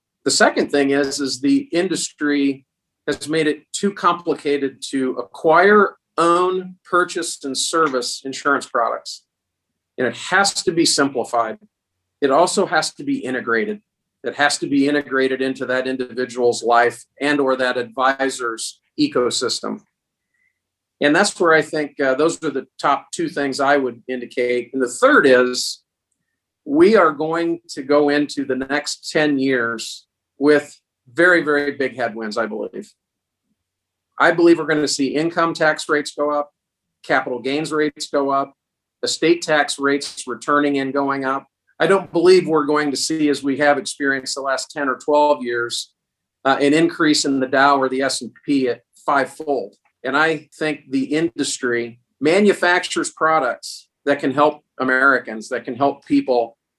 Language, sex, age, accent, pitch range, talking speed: English, male, 40-59, American, 130-155 Hz, 155 wpm